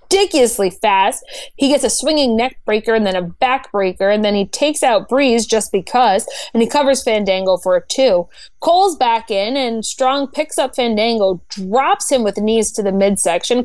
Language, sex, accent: English, female, American